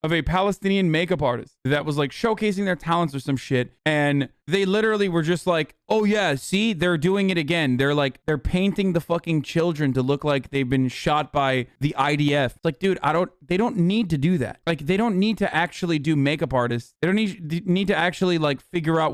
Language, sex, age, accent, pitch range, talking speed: English, male, 20-39, American, 150-205 Hz, 230 wpm